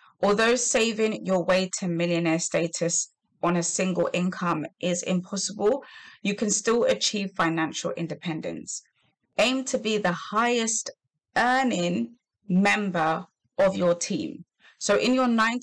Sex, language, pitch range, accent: female, English, 170-220 Hz, British